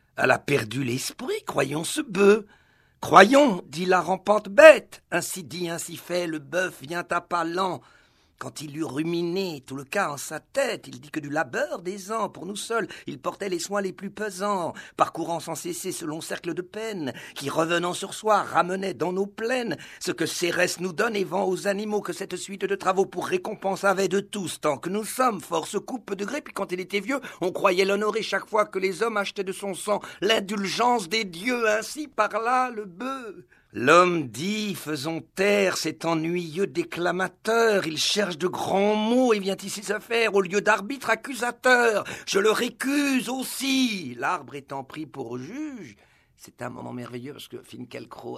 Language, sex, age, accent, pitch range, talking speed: French, male, 50-69, French, 165-215 Hz, 200 wpm